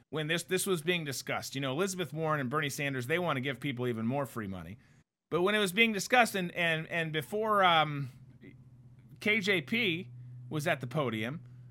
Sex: male